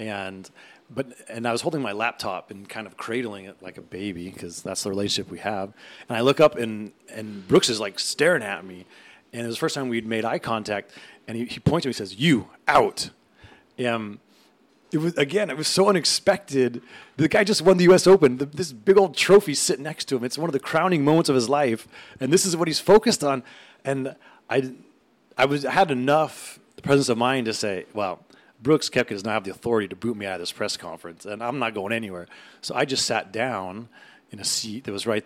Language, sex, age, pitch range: English, male, 30-49, 100-135 Hz